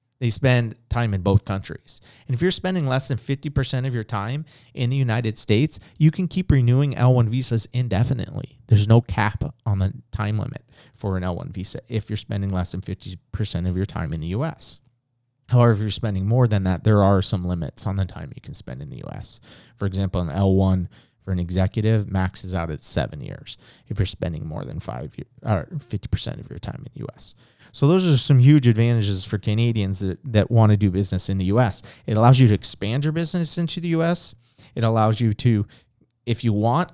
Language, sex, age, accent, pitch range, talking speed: English, male, 30-49, American, 100-135 Hz, 210 wpm